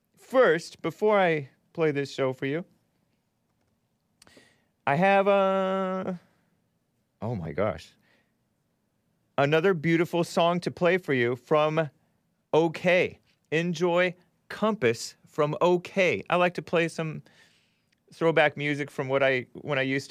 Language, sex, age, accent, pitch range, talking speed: English, male, 30-49, American, 130-180 Hz, 120 wpm